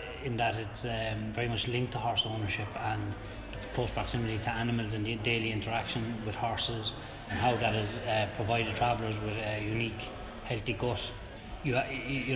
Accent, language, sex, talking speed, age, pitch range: Irish, English, male, 170 wpm, 20-39, 110-120 Hz